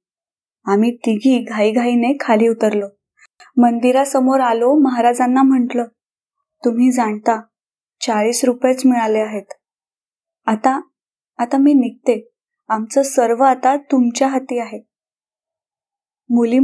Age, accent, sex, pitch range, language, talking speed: 20-39, native, female, 230-280 Hz, Marathi, 95 wpm